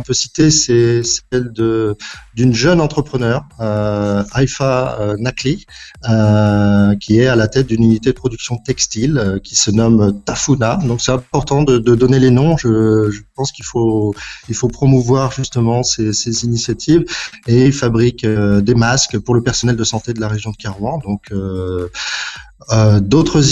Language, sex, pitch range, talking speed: Arabic, male, 105-130 Hz, 170 wpm